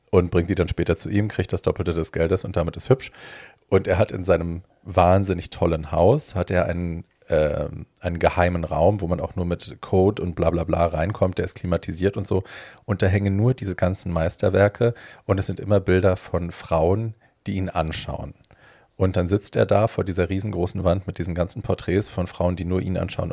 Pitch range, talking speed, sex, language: 85-100 Hz, 210 wpm, male, German